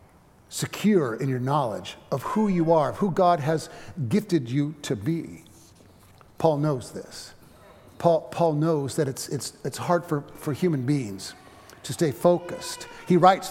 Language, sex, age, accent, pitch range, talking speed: English, male, 50-69, American, 150-195 Hz, 160 wpm